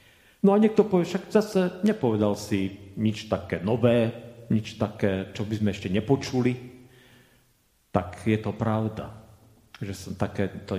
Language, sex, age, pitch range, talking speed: Slovak, male, 40-59, 90-115 Hz, 140 wpm